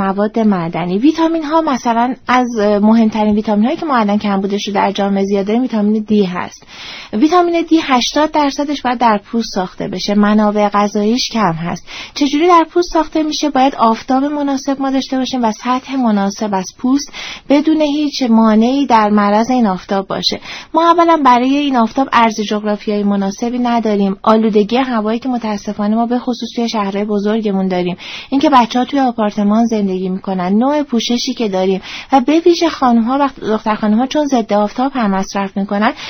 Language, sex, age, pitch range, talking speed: Persian, female, 30-49, 210-270 Hz, 160 wpm